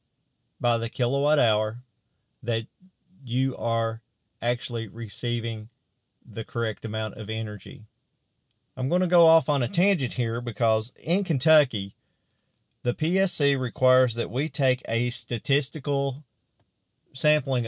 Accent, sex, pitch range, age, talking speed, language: American, male, 115-135 Hz, 40-59, 115 wpm, English